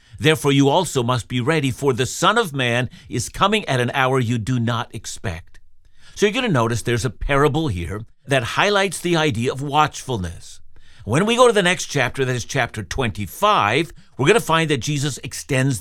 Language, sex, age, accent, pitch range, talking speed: English, male, 60-79, American, 115-160 Hz, 200 wpm